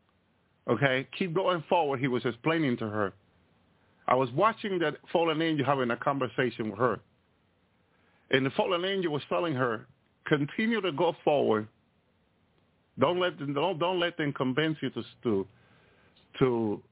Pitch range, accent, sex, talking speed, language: 110-160 Hz, American, male, 155 wpm, English